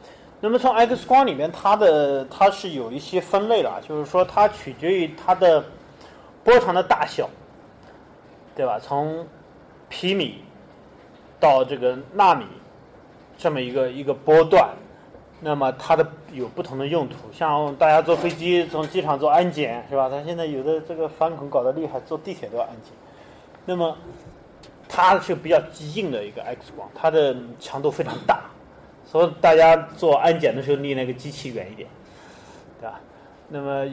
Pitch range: 135-170 Hz